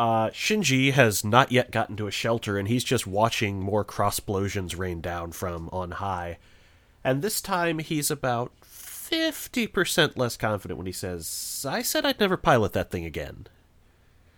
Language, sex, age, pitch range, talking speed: English, male, 30-49, 95-120 Hz, 165 wpm